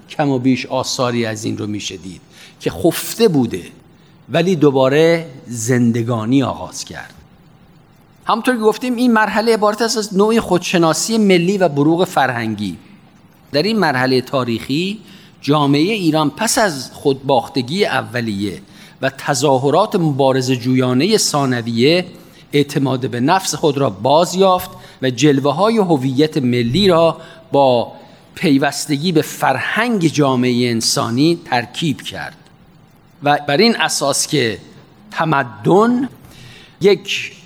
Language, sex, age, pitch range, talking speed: Persian, male, 50-69, 130-180 Hz, 115 wpm